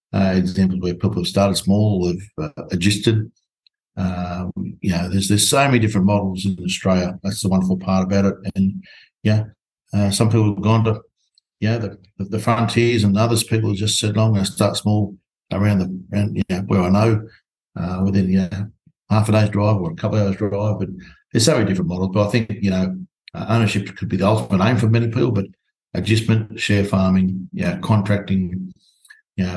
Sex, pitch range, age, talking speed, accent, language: male, 95-105 Hz, 60-79, 195 wpm, Australian, English